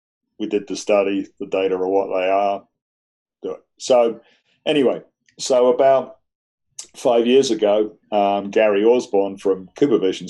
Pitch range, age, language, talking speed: 90-100 Hz, 40-59, English, 140 wpm